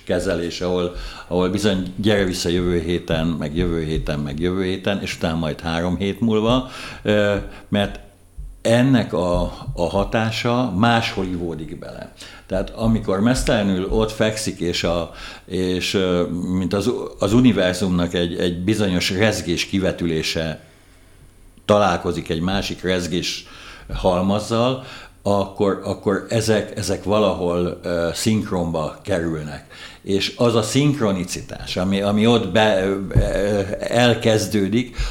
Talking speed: 110 wpm